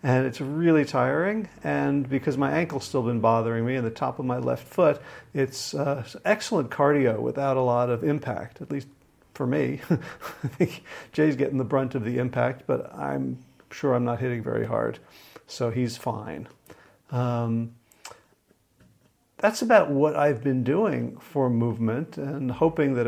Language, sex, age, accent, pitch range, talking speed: English, male, 50-69, American, 120-145 Hz, 160 wpm